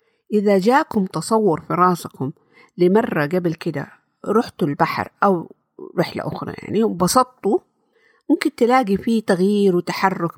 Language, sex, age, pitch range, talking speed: Arabic, female, 50-69, 170-230 Hz, 115 wpm